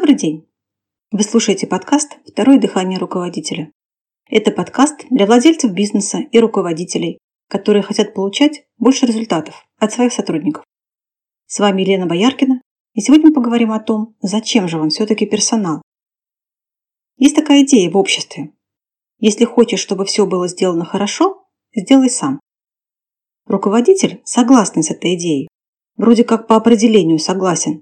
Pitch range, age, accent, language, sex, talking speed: 185-245 Hz, 30-49, native, Russian, female, 135 wpm